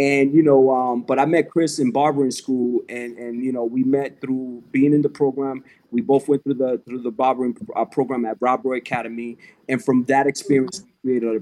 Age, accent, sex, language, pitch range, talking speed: 30-49, American, male, English, 125-145 Hz, 220 wpm